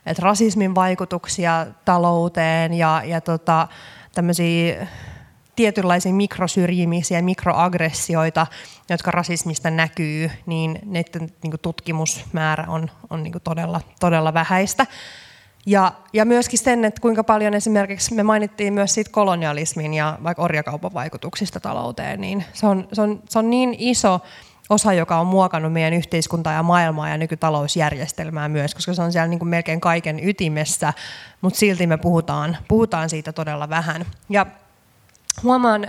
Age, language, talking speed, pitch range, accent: 20-39, Finnish, 130 wpm, 160-200 Hz, native